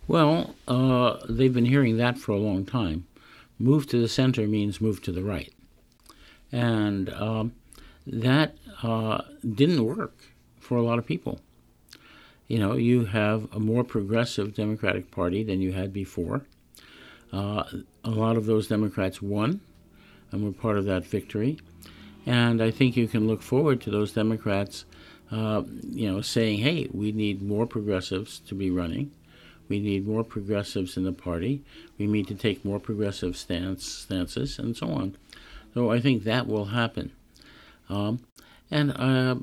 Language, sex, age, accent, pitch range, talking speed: English, male, 60-79, American, 100-125 Hz, 160 wpm